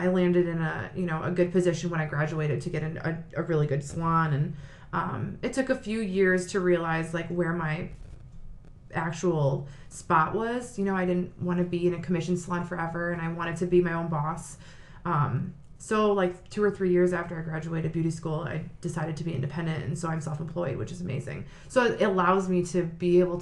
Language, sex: English, female